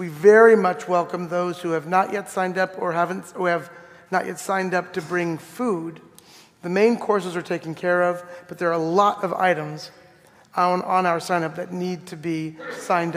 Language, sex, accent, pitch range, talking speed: English, male, American, 170-200 Hz, 210 wpm